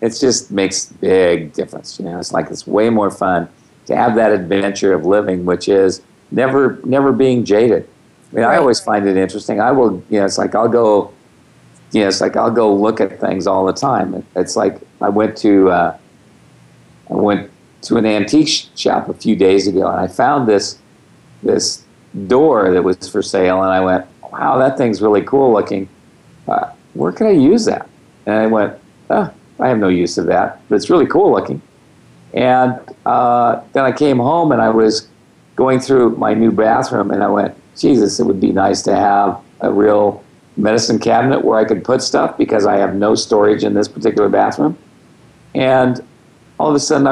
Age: 50-69